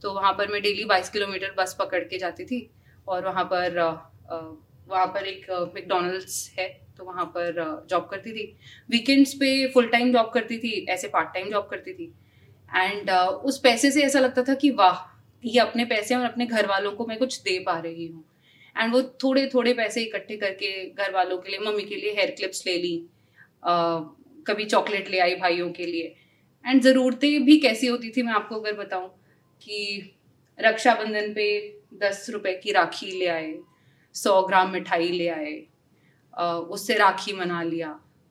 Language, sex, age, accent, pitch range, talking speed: Hindi, female, 30-49, native, 180-240 Hz, 180 wpm